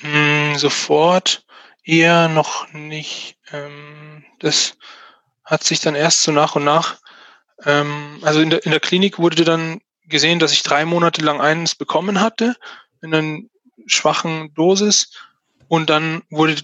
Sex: male